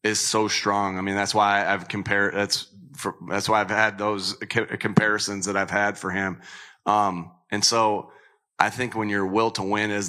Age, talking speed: 30-49, 195 wpm